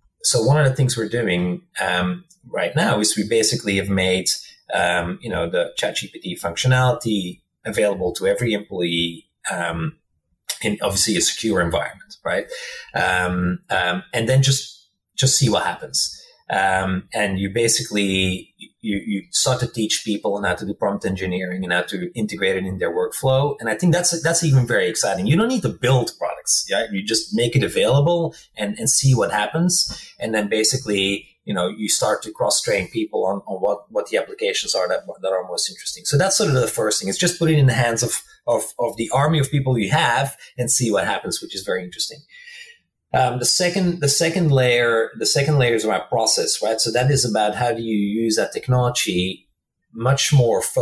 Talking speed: 200 wpm